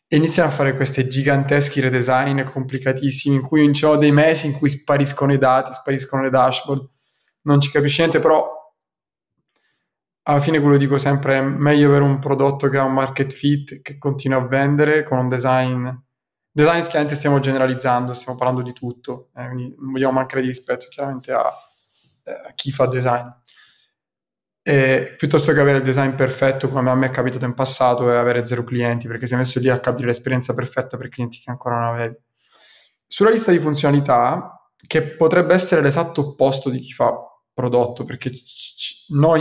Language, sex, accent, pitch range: Italian, male, native, 130-145 Hz